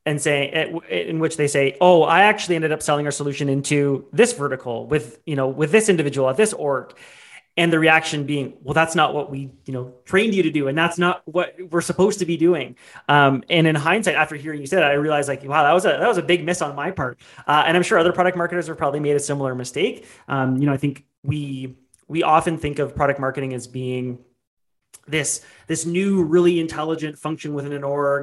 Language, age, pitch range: English, 30-49, 140-170 Hz